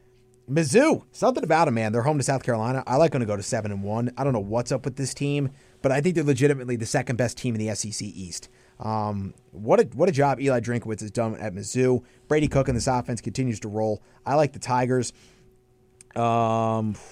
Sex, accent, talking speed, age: male, American, 215 wpm, 30-49